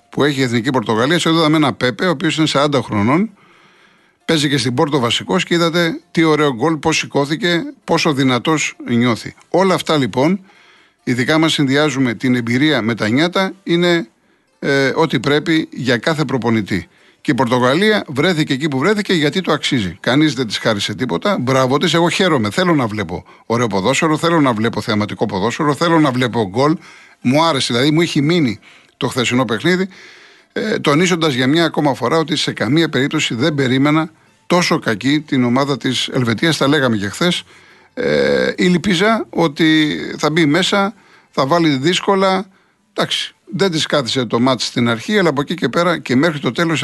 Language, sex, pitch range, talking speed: Greek, male, 130-170 Hz, 175 wpm